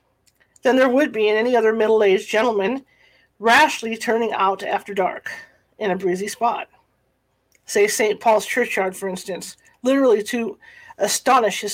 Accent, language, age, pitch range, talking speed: American, English, 50-69, 215-260 Hz, 145 wpm